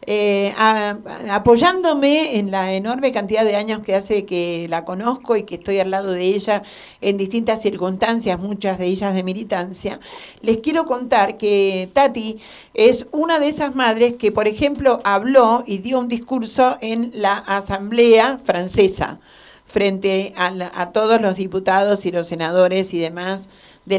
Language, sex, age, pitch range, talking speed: Spanish, female, 50-69, 190-235 Hz, 155 wpm